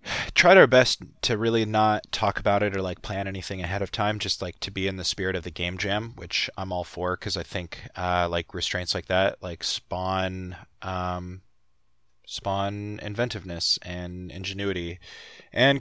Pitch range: 90-110 Hz